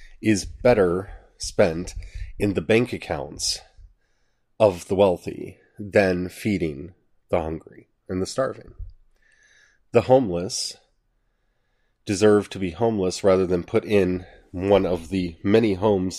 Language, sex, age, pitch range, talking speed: English, male, 30-49, 90-110 Hz, 120 wpm